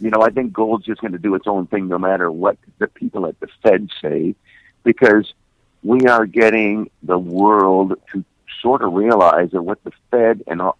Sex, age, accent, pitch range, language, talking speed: male, 50-69, American, 95-115 Hz, English, 205 wpm